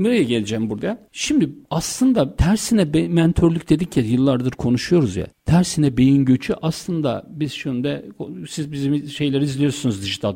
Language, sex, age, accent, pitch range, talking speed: Turkish, male, 60-79, native, 130-180 Hz, 145 wpm